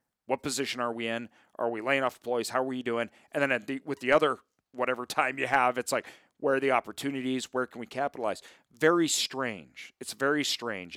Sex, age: male, 40-59